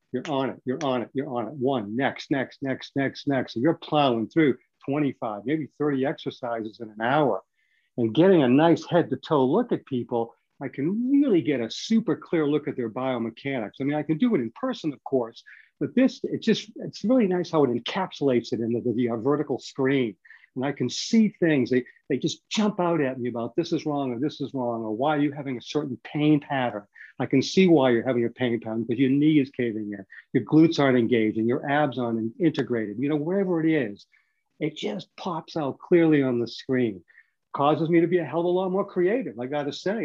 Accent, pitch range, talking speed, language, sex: American, 125-170 Hz, 230 wpm, English, male